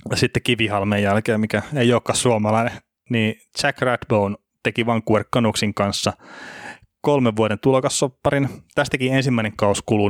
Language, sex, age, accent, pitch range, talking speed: Finnish, male, 20-39, native, 105-120 Hz, 120 wpm